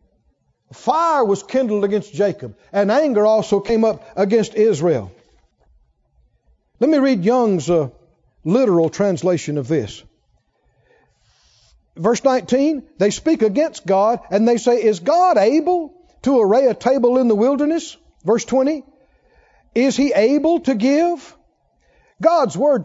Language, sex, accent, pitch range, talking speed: English, male, American, 195-280 Hz, 130 wpm